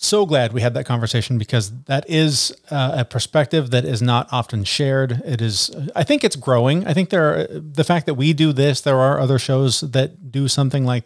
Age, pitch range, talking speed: 30-49, 120-150 Hz, 220 wpm